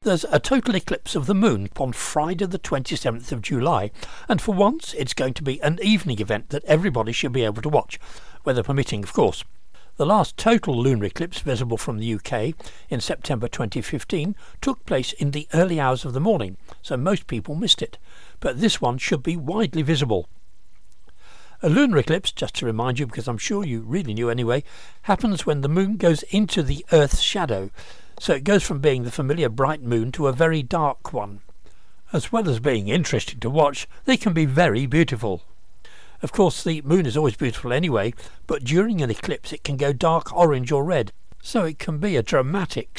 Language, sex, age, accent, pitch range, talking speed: English, male, 60-79, British, 125-175 Hz, 195 wpm